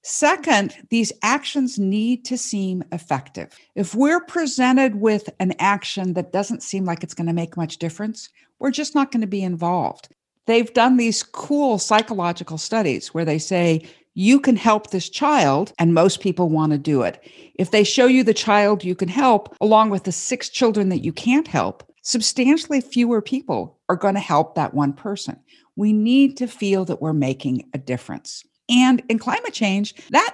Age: 50-69